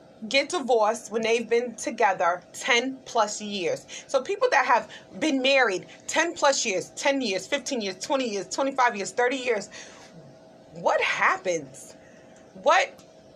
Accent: American